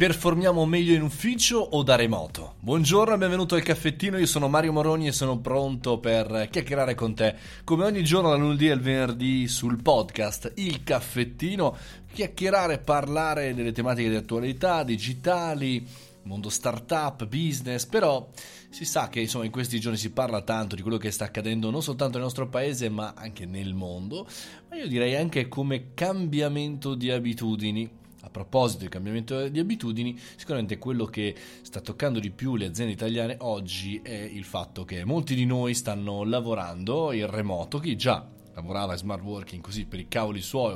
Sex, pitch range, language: male, 110-145 Hz, Italian